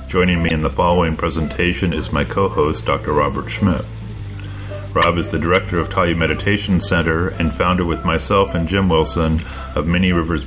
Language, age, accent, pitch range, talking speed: English, 40-59, American, 80-95 Hz, 170 wpm